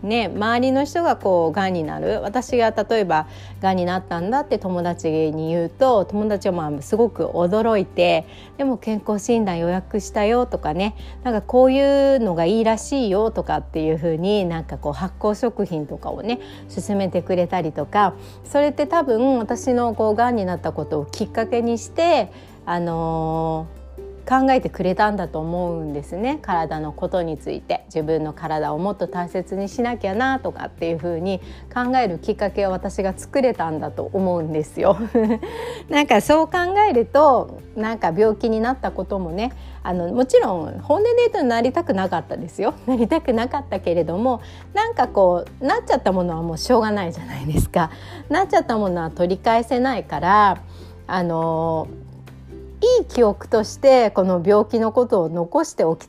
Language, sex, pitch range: Japanese, female, 170-240 Hz